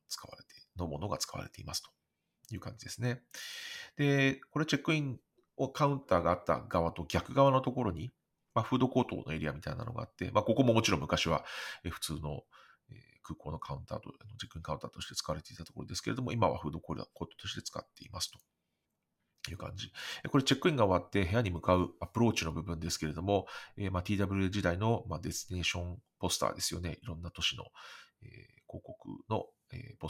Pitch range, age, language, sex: 85-125 Hz, 40-59, Japanese, male